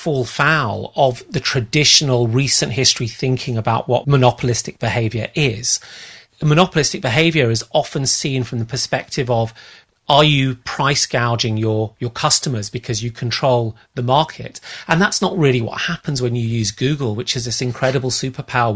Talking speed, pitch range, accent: 155 wpm, 115-140 Hz, British